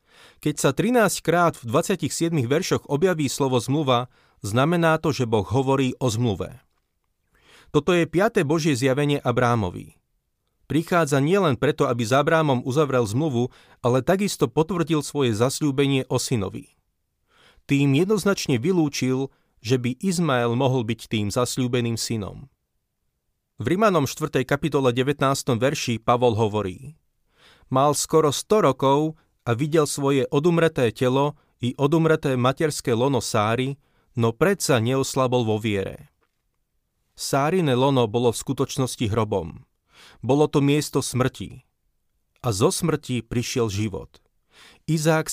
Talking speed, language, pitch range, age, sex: 120 wpm, Slovak, 120-155 Hz, 30-49, male